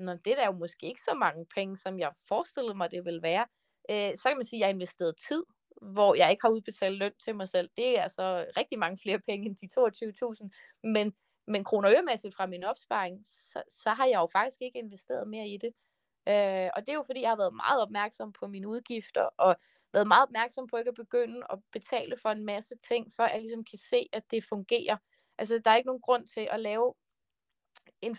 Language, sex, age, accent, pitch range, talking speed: Danish, female, 20-39, native, 205-245 Hz, 230 wpm